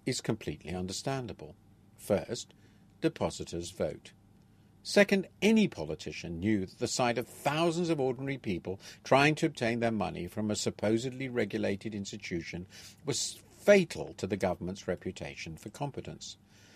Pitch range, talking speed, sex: 100-125 Hz, 130 wpm, male